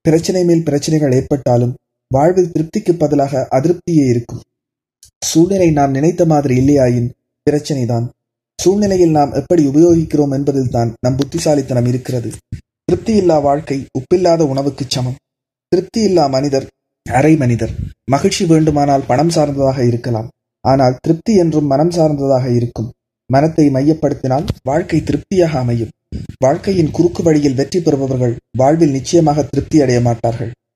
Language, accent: Tamil, native